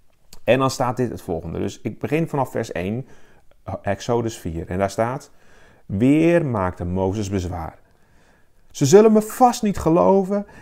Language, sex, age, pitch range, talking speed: Dutch, male, 40-59, 95-150 Hz, 155 wpm